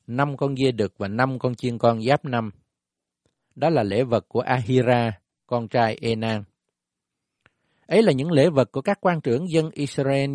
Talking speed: 180 wpm